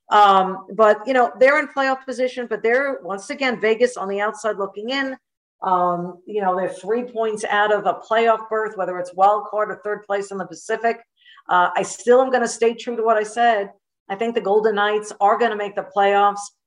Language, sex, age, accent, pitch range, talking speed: English, female, 50-69, American, 195-230 Hz, 225 wpm